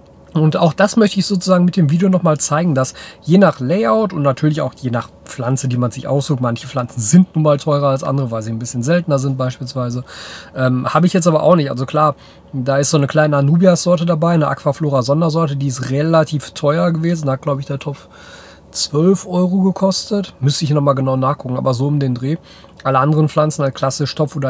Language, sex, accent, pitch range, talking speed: German, male, German, 135-170 Hz, 215 wpm